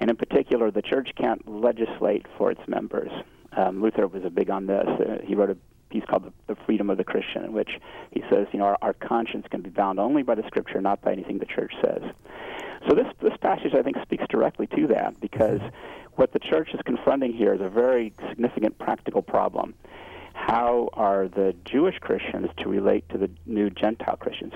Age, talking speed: 40-59, 205 wpm